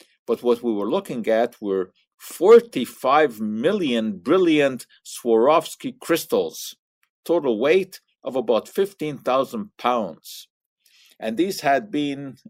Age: 50-69